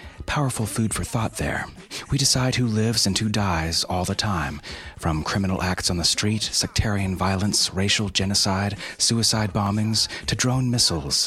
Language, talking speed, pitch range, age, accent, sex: English, 160 wpm, 90-115 Hz, 30-49, American, male